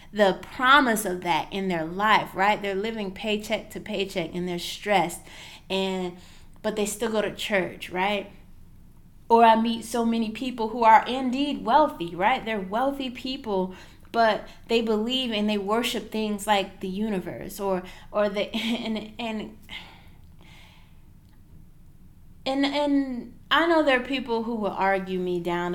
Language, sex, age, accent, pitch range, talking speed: English, female, 20-39, American, 180-230 Hz, 155 wpm